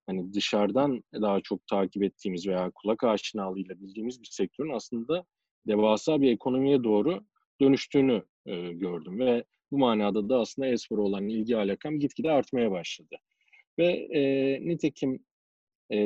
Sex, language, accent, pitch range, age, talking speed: male, Turkish, native, 100-135 Hz, 40-59, 140 wpm